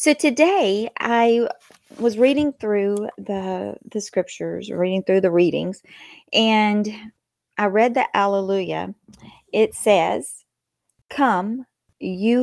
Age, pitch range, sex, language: 40-59, 180-230 Hz, female, English